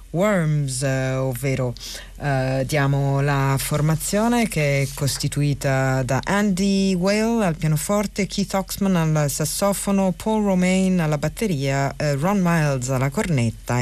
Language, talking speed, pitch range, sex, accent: Italian, 120 wpm, 135-165 Hz, female, native